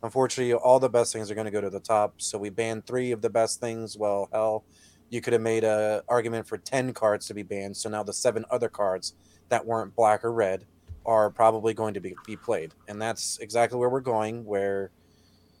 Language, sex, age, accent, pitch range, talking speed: English, male, 30-49, American, 100-120 Hz, 225 wpm